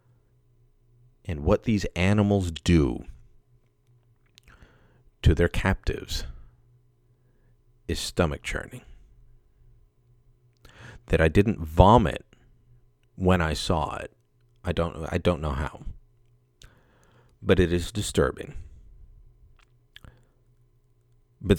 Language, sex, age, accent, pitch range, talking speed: English, male, 40-59, American, 85-120 Hz, 85 wpm